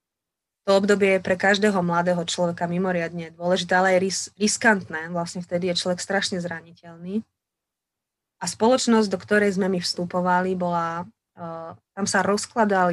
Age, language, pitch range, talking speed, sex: 20-39, Slovak, 175-205 Hz, 135 wpm, female